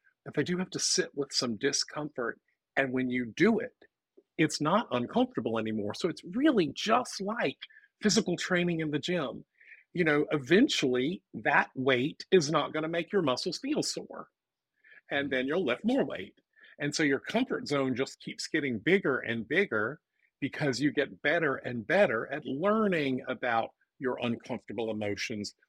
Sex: male